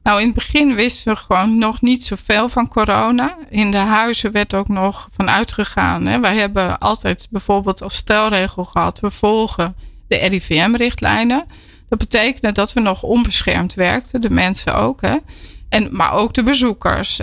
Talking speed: 165 wpm